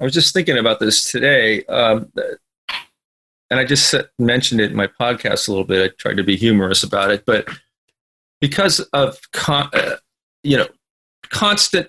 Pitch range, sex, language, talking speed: 110-165 Hz, male, English, 175 wpm